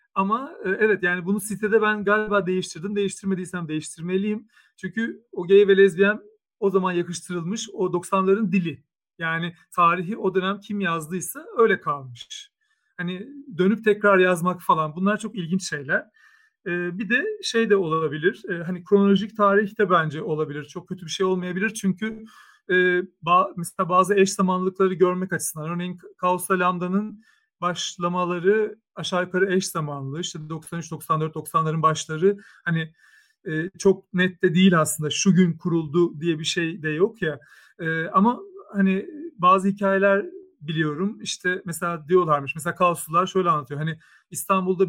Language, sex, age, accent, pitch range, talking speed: Turkish, male, 40-59, native, 170-200 Hz, 140 wpm